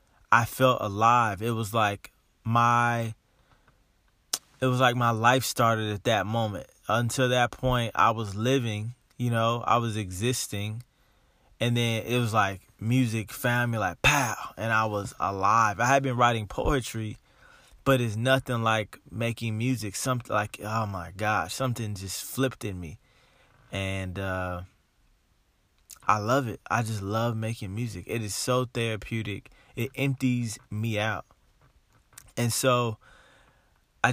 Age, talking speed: 20-39, 145 wpm